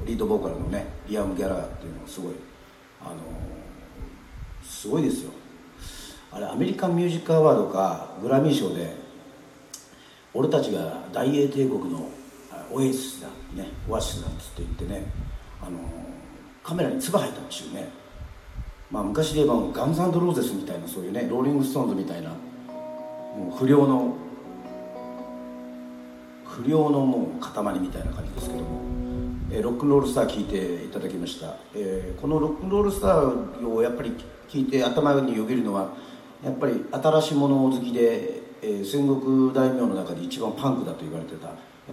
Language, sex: Japanese, male